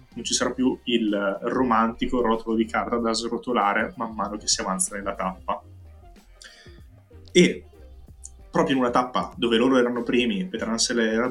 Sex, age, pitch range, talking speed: male, 20-39, 100-120 Hz, 155 wpm